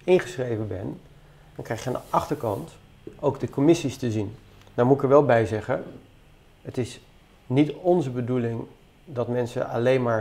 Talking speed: 170 wpm